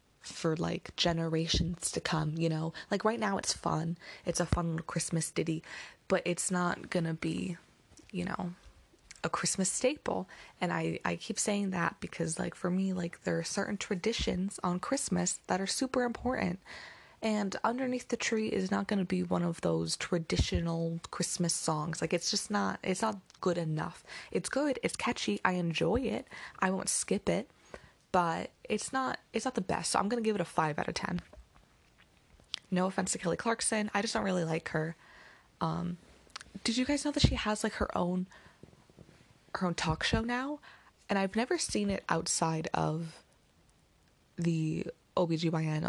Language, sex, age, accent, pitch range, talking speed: English, female, 20-39, American, 165-210 Hz, 175 wpm